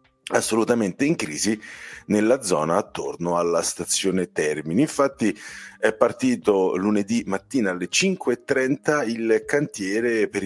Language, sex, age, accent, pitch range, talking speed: Italian, male, 40-59, native, 95-130 Hz, 110 wpm